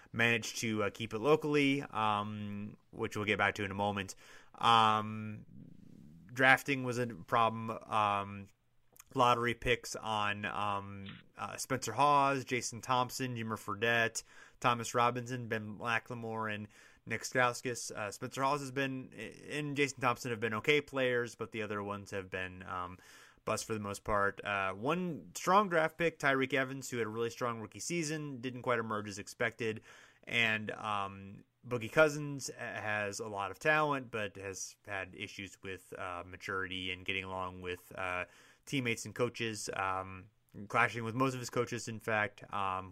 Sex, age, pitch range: male, 30-49, 100-125 Hz